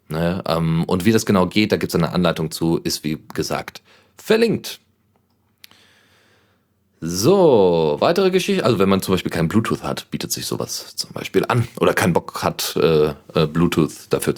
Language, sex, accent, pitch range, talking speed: German, male, German, 90-120 Hz, 175 wpm